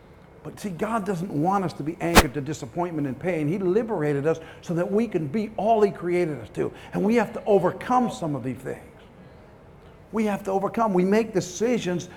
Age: 50-69